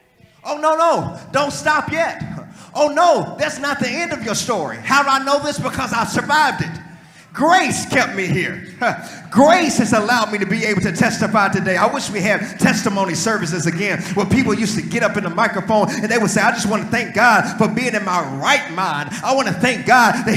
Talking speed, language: 220 wpm, English